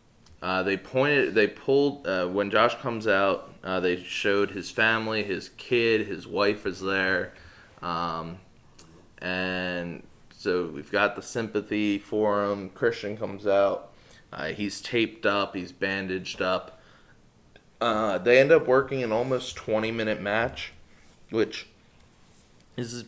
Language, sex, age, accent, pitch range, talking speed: English, male, 20-39, American, 95-120 Hz, 135 wpm